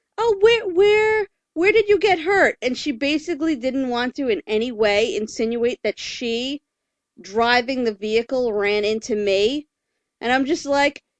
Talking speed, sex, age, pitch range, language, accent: 160 wpm, female, 40-59, 210-335 Hz, English, American